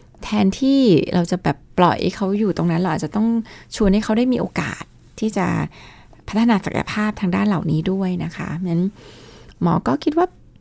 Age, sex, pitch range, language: 20-39, female, 175-215 Hz, Thai